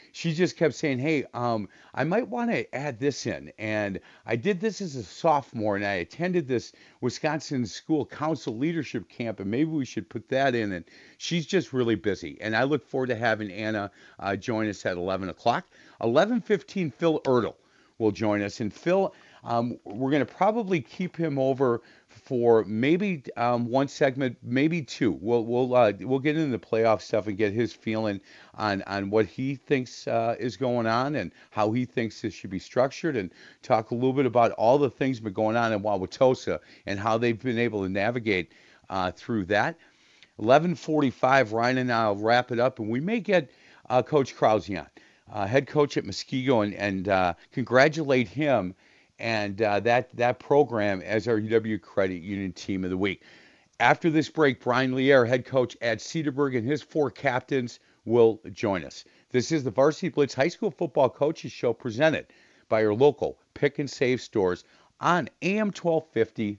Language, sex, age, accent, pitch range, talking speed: English, male, 50-69, American, 110-145 Hz, 185 wpm